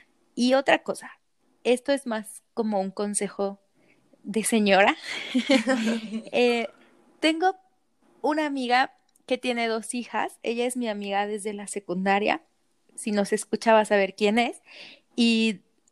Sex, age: female, 30-49